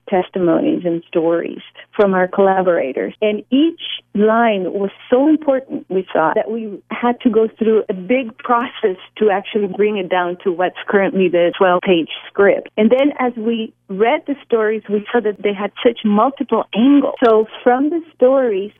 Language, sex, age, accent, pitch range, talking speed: English, female, 40-59, American, 180-225 Hz, 170 wpm